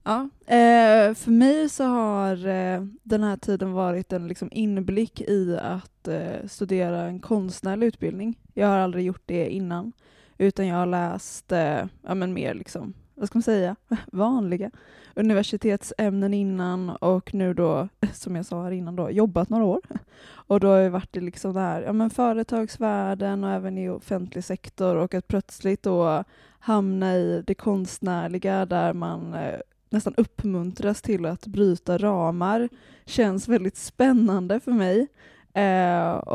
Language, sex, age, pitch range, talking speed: Swedish, female, 20-39, 180-210 Hz, 150 wpm